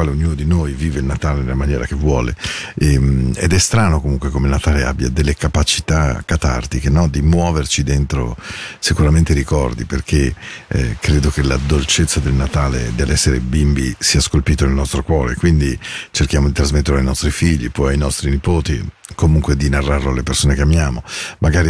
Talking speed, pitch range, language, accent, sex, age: 165 wpm, 70-90 Hz, Spanish, Italian, male, 50-69